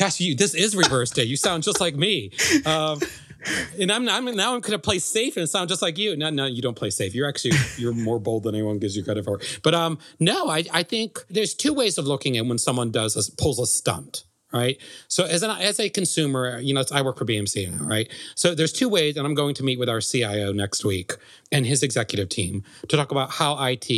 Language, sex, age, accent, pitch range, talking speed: English, male, 30-49, American, 115-160 Hz, 250 wpm